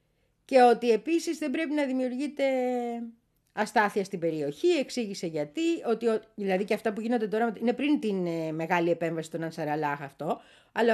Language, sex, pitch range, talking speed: Greek, female, 185-270 Hz, 160 wpm